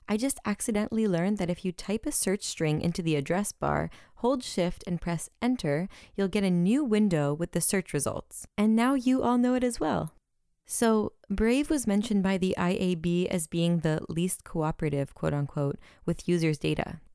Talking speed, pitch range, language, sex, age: 190 wpm, 165-215 Hz, English, female, 20-39